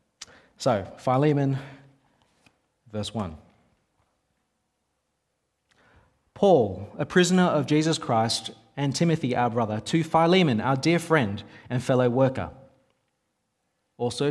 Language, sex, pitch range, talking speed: English, male, 115-150 Hz, 95 wpm